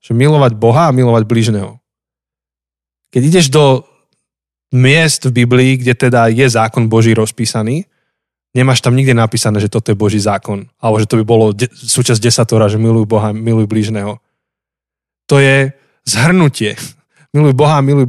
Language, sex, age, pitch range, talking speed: Slovak, male, 20-39, 115-145 Hz, 160 wpm